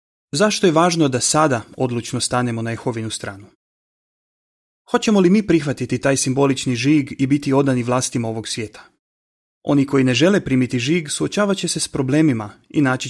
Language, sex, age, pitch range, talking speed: Croatian, male, 30-49, 120-155 Hz, 160 wpm